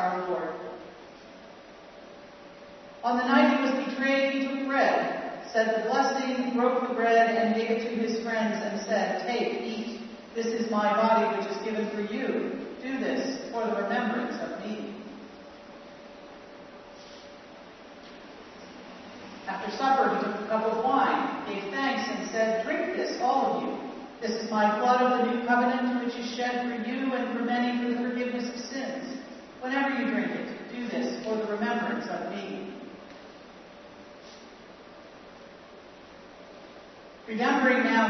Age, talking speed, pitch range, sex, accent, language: 50-69, 145 wpm, 215-255 Hz, female, American, English